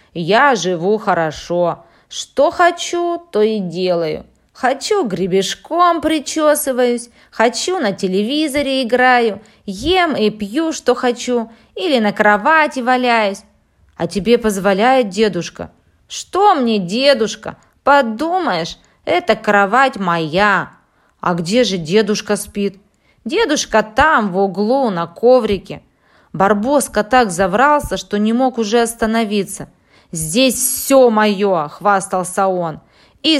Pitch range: 195-255 Hz